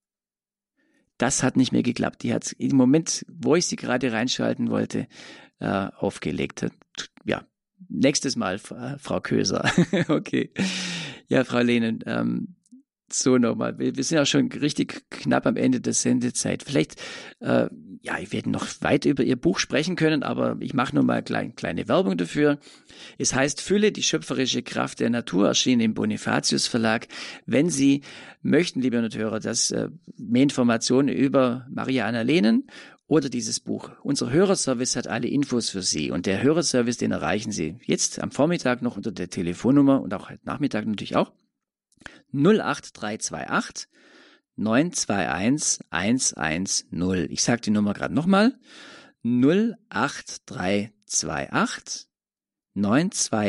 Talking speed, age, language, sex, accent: 140 wpm, 50-69, German, male, German